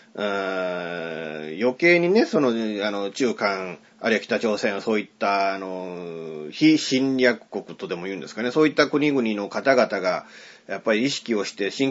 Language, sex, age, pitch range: Japanese, male, 30-49, 105-165 Hz